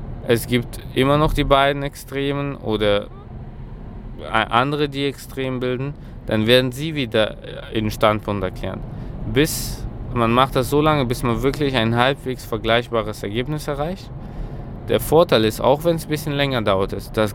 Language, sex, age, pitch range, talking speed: German, male, 20-39, 110-135 Hz, 150 wpm